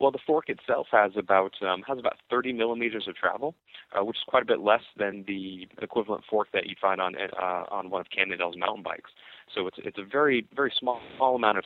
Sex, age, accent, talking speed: male, 30-49, American, 230 wpm